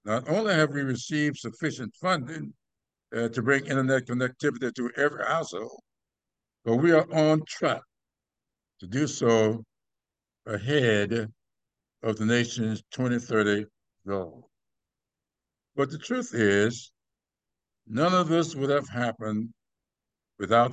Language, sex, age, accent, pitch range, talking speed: English, male, 60-79, American, 115-150 Hz, 115 wpm